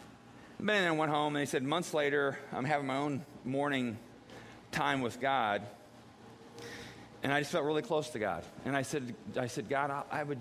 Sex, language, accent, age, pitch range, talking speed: male, English, American, 40-59, 115-155 Hz, 195 wpm